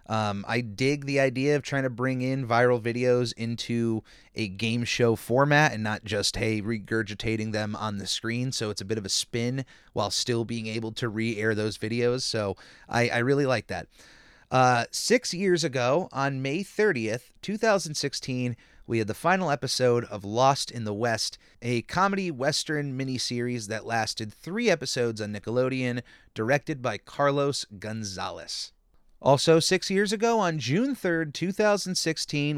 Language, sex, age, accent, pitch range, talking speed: English, male, 30-49, American, 115-155 Hz, 160 wpm